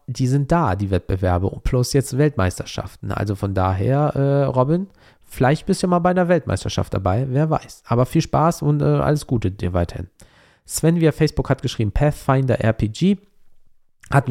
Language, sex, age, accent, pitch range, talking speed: German, male, 40-59, German, 105-145 Hz, 170 wpm